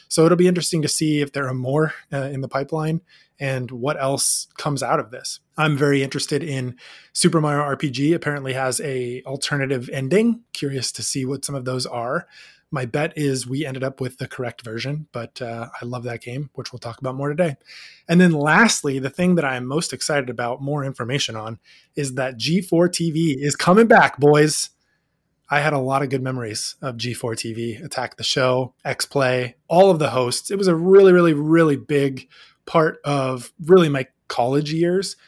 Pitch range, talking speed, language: 130-160 Hz, 195 wpm, English